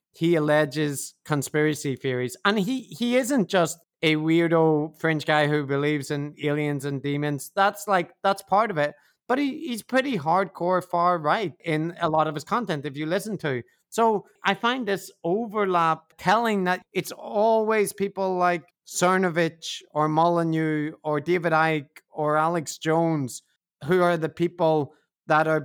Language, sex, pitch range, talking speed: English, male, 150-185 Hz, 160 wpm